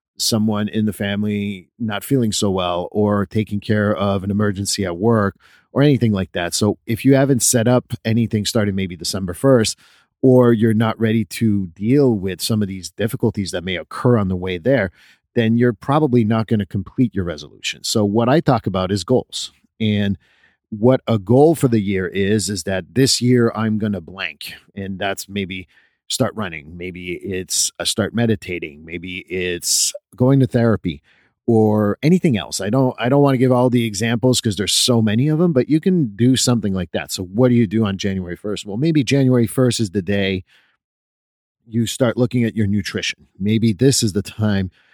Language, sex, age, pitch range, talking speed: English, male, 50-69, 100-120 Hz, 195 wpm